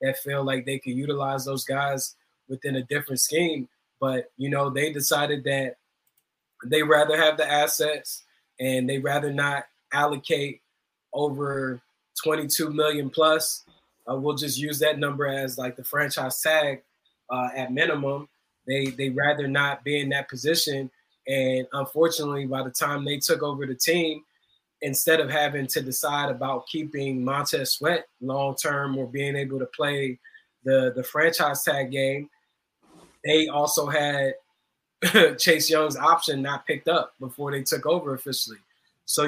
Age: 20-39